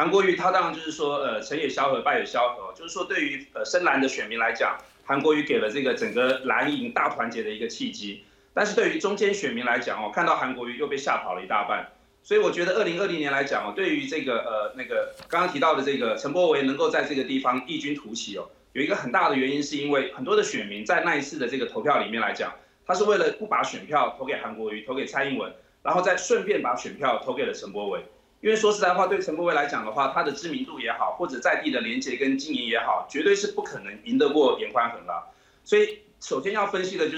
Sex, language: male, Chinese